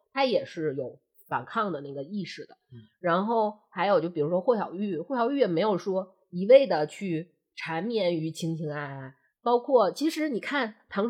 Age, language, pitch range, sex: 20-39, Chinese, 160-240 Hz, female